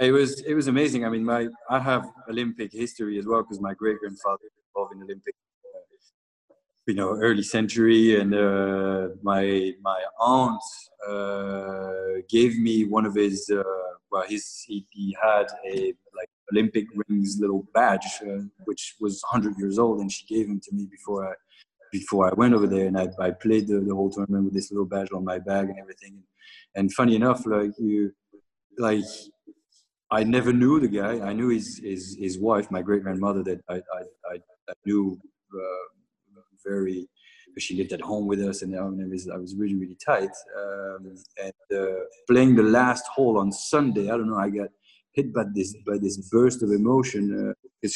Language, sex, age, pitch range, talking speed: English, male, 20-39, 95-115 Hz, 185 wpm